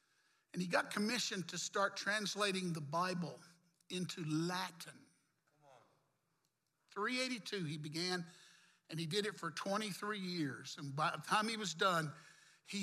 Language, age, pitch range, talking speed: English, 60-79, 165-205 Hz, 135 wpm